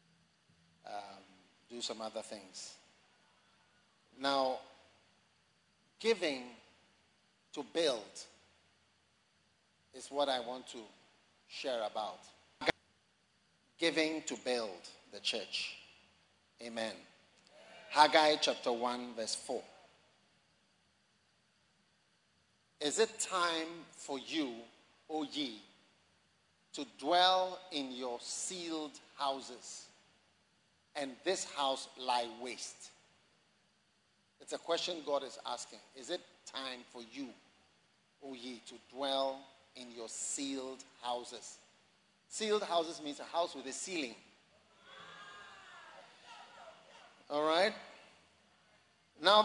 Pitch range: 120-170 Hz